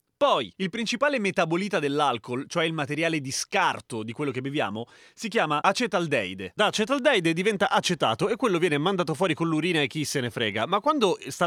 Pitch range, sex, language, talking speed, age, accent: 145-215 Hz, male, Italian, 190 wpm, 30-49, native